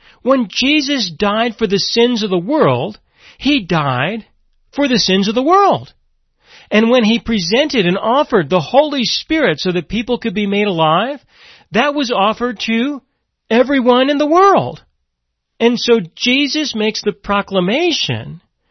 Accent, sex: American, male